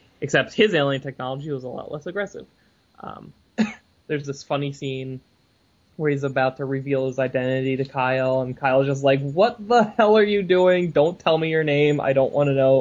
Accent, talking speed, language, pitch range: American, 200 wpm, English, 130-150 Hz